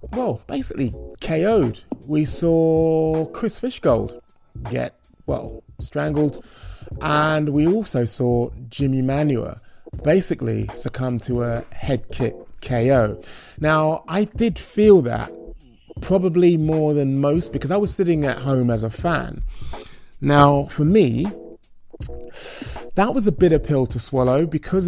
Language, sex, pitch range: English, male, 120-160 Hz